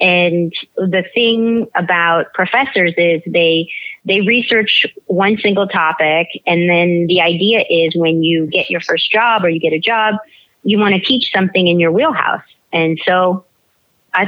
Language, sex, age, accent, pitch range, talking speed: English, female, 30-49, American, 170-200 Hz, 165 wpm